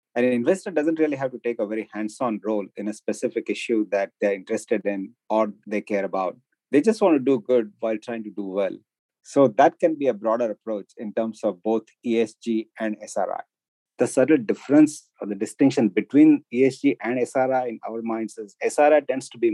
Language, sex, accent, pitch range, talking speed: English, male, Indian, 105-125 Hz, 205 wpm